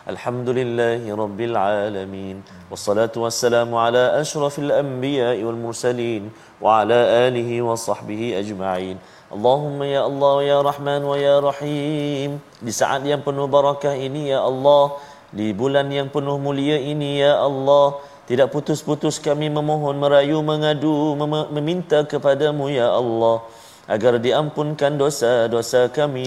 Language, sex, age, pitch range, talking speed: Malayalam, male, 30-49, 105-145 Hz, 130 wpm